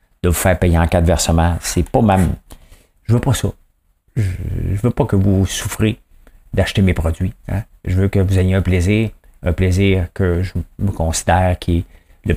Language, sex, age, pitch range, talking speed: English, male, 50-69, 85-100 Hz, 200 wpm